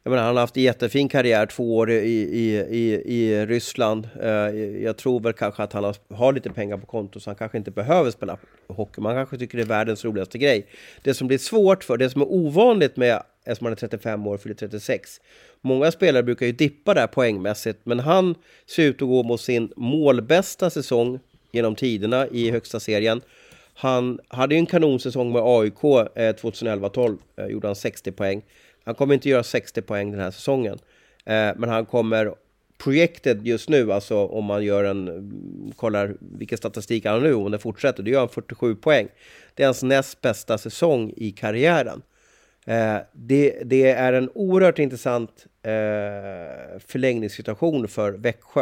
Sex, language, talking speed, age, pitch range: male, English, 175 wpm, 30-49, 110-130 Hz